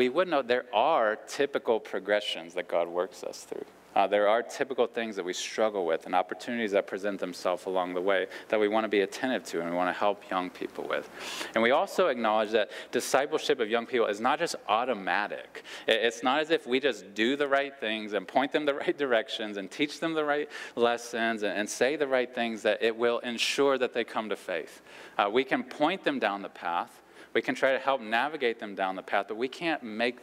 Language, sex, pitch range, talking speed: English, male, 105-130 Hz, 230 wpm